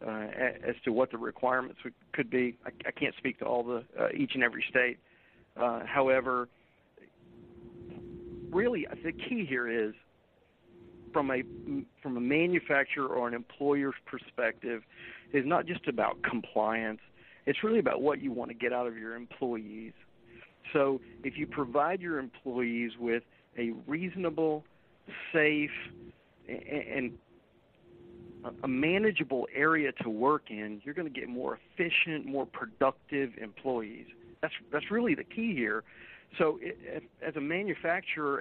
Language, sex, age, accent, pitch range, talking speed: English, male, 50-69, American, 120-155 Hz, 140 wpm